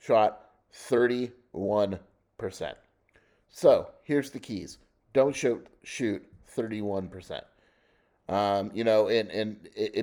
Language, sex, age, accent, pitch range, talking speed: English, male, 30-49, American, 100-125 Hz, 95 wpm